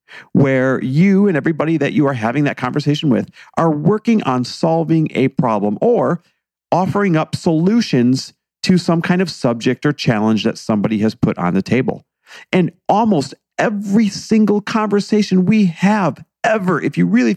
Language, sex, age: English, male, 40-59